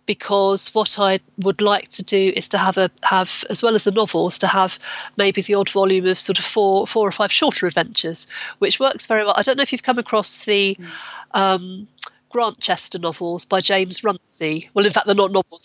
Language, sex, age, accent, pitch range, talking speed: French, female, 40-59, British, 185-215 Hz, 215 wpm